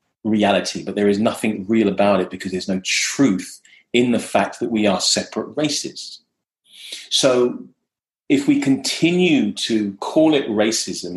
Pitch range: 95-115 Hz